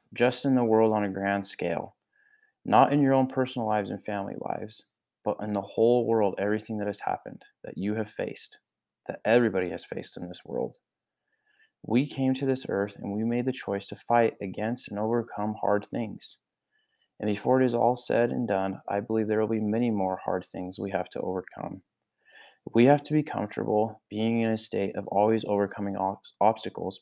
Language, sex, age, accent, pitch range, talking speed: English, male, 20-39, American, 100-120 Hz, 195 wpm